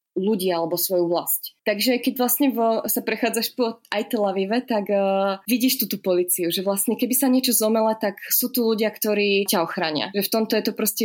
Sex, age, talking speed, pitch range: female, 20-39, 215 wpm, 195-235 Hz